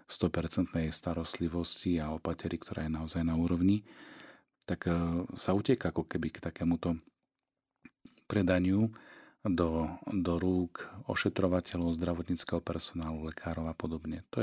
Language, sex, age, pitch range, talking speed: Slovak, male, 40-59, 85-95 Hz, 110 wpm